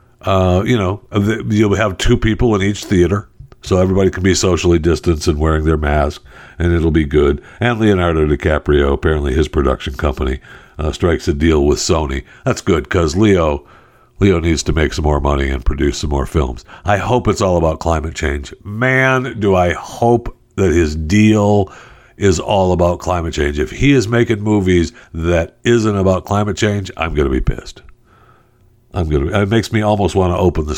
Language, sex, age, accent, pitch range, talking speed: English, male, 60-79, American, 80-105 Hz, 190 wpm